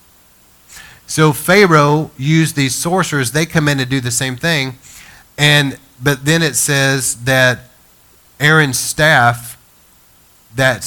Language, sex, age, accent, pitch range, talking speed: English, male, 30-49, American, 110-145 Hz, 120 wpm